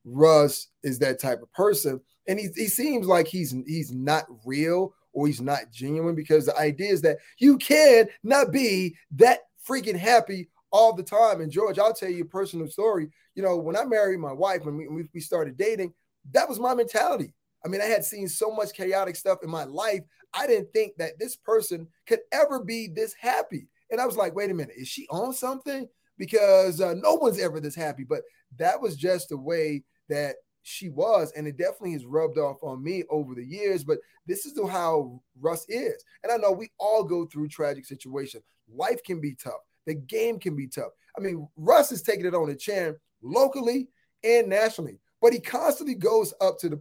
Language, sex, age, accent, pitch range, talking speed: English, male, 20-39, American, 155-220 Hz, 210 wpm